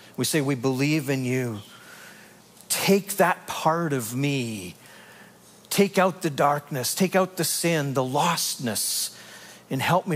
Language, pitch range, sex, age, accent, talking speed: English, 135-185 Hz, male, 50-69, American, 140 wpm